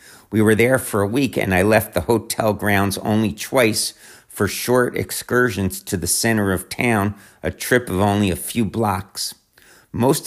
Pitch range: 100-115 Hz